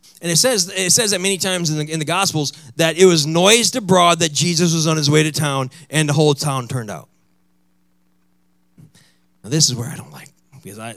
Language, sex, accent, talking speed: English, male, American, 210 wpm